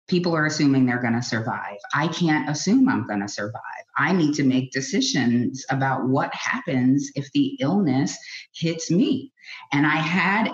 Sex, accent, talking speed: female, American, 170 wpm